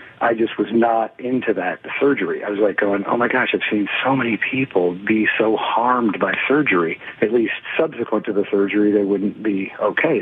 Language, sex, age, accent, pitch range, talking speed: English, male, 40-59, American, 105-125 Hz, 200 wpm